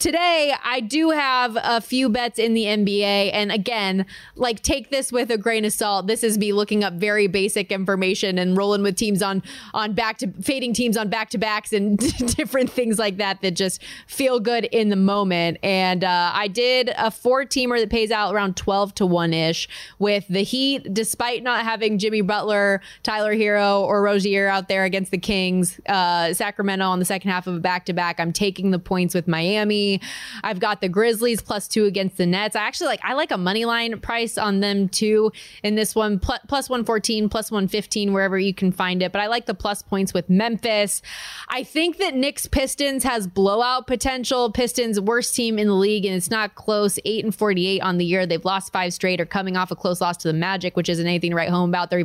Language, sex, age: English, female, 20-39